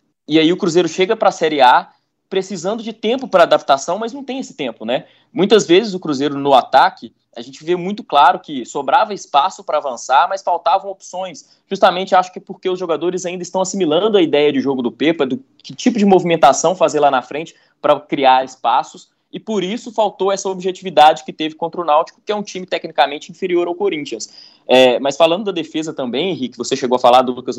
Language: Portuguese